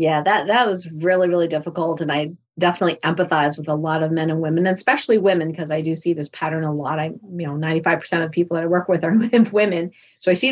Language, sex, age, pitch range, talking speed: English, female, 30-49, 160-195 Hz, 245 wpm